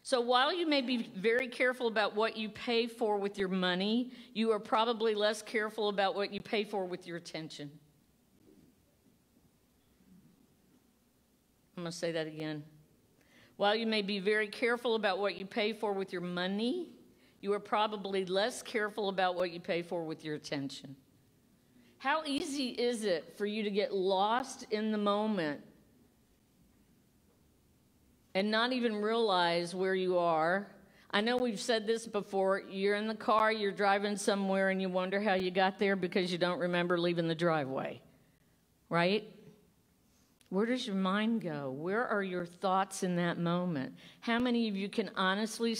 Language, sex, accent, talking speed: English, female, American, 165 wpm